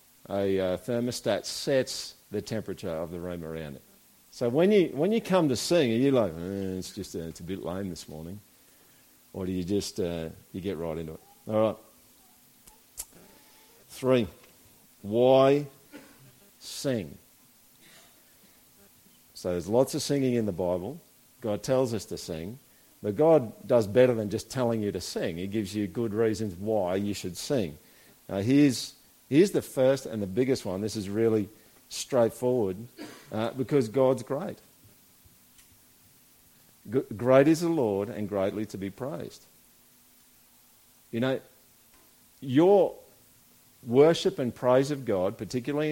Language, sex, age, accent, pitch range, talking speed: English, male, 50-69, Australian, 100-135 Hz, 150 wpm